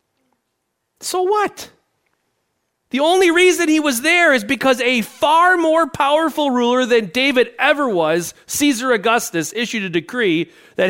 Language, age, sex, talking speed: English, 40-59, male, 140 wpm